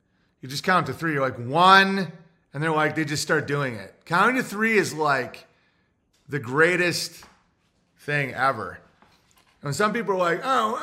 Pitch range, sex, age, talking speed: 135-185 Hz, male, 30-49, 170 wpm